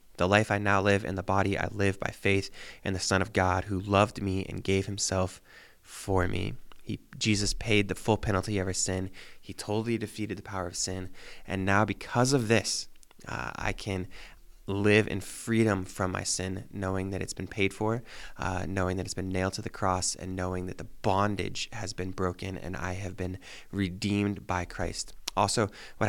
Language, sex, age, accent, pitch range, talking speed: English, male, 20-39, American, 95-105 Hz, 200 wpm